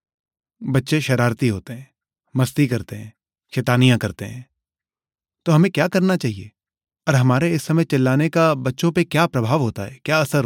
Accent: native